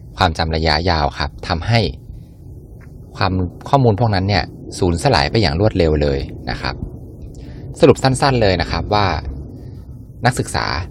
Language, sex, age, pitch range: Thai, male, 20-39, 80-105 Hz